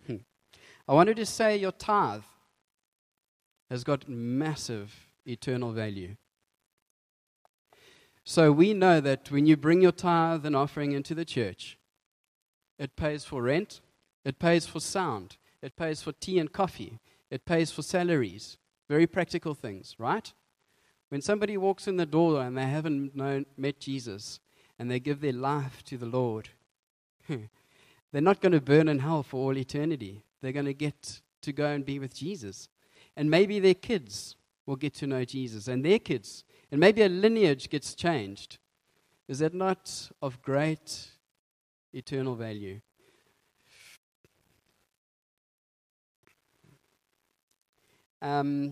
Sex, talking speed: male, 140 wpm